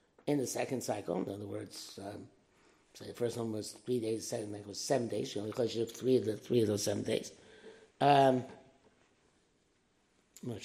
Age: 60-79